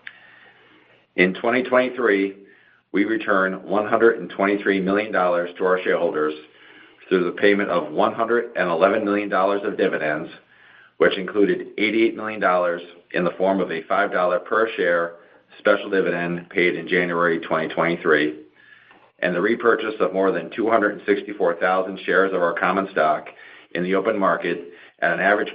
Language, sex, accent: English, male, American